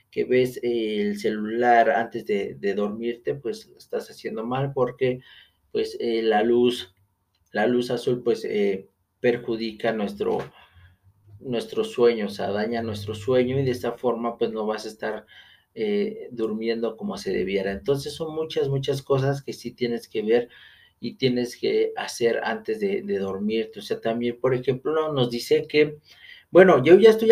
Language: Spanish